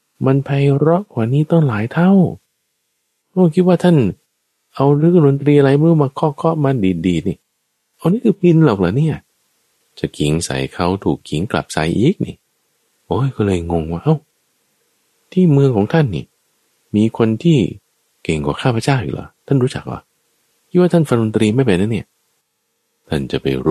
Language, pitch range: Thai, 100-155 Hz